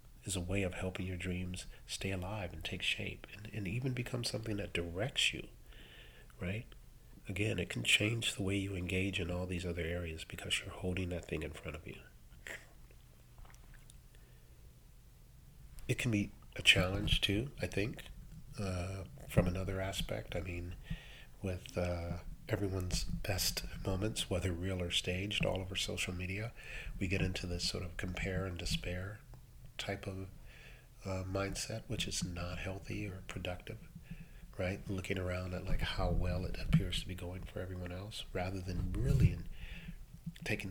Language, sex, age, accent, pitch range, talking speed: English, male, 40-59, American, 90-105 Hz, 160 wpm